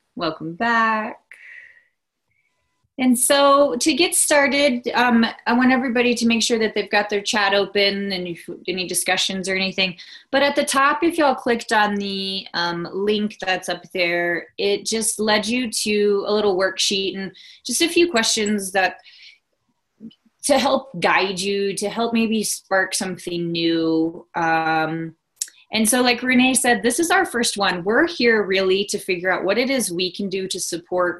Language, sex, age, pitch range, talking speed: English, female, 20-39, 185-230 Hz, 170 wpm